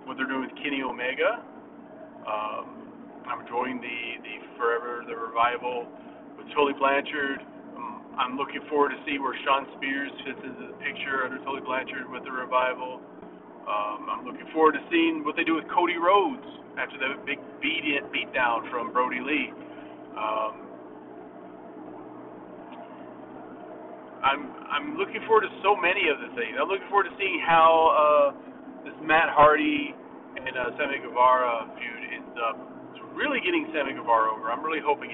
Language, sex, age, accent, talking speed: English, male, 40-59, American, 155 wpm